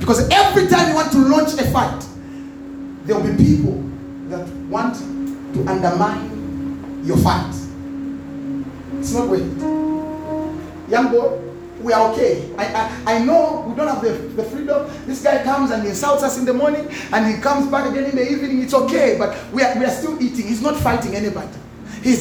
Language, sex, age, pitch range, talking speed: English, male, 30-49, 205-295 Hz, 185 wpm